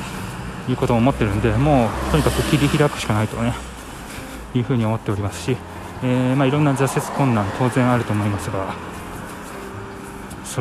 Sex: male